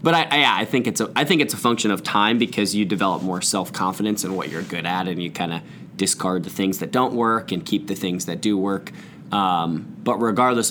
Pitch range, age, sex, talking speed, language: 100-125 Hz, 20-39, male, 235 wpm, English